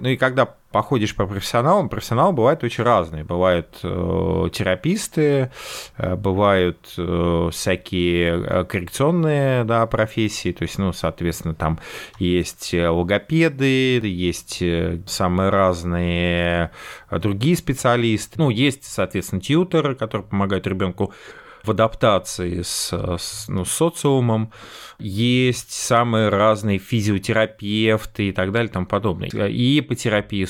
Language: Russian